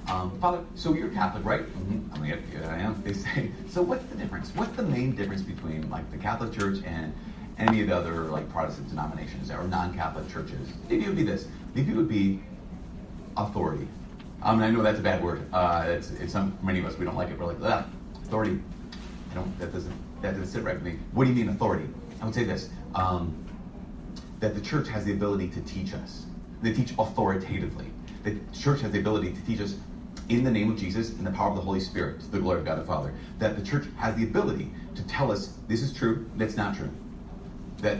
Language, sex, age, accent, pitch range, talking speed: English, male, 30-49, American, 90-115 Hz, 225 wpm